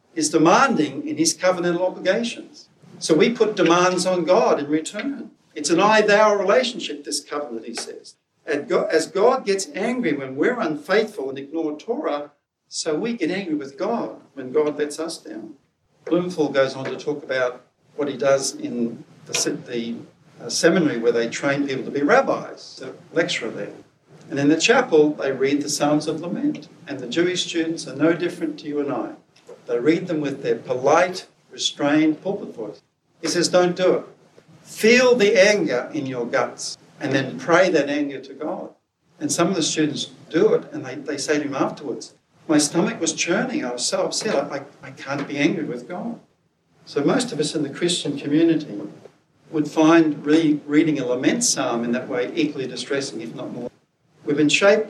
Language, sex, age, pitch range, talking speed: English, male, 60-79, 145-180 Hz, 185 wpm